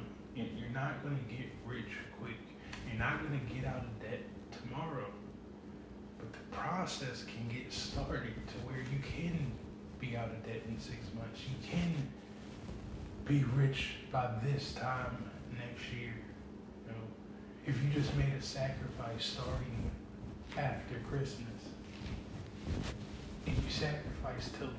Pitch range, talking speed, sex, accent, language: 105-125 Hz, 140 wpm, male, American, English